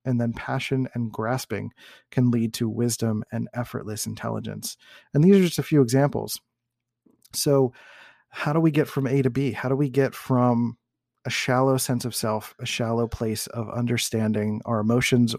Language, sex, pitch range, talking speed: English, male, 115-130 Hz, 175 wpm